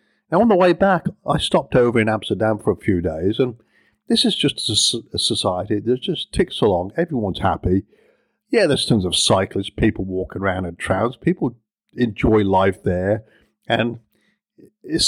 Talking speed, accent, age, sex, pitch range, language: 165 wpm, British, 50-69, male, 95-125 Hz, English